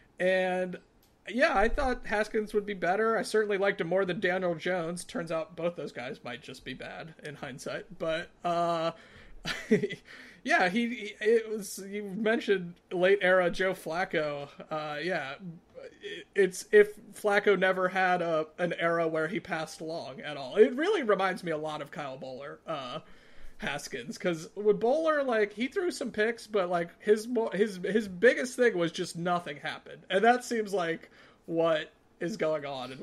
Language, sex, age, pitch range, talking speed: English, male, 30-49, 175-225 Hz, 170 wpm